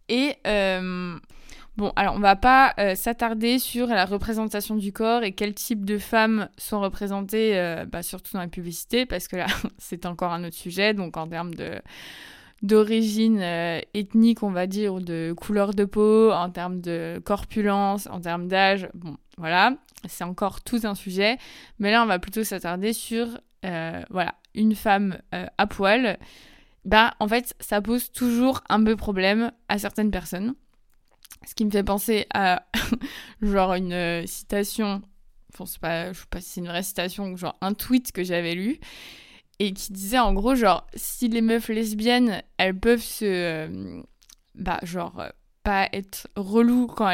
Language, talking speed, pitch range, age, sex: French, 175 wpm, 185-225 Hz, 20-39, female